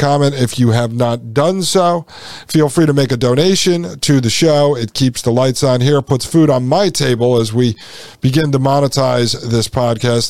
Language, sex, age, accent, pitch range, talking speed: English, male, 50-69, American, 130-155 Hz, 200 wpm